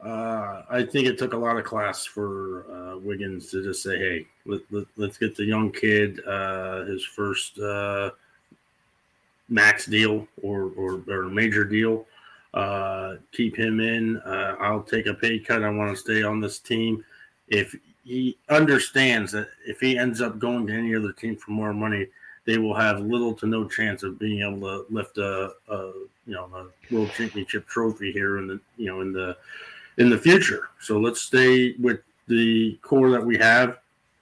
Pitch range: 100-120 Hz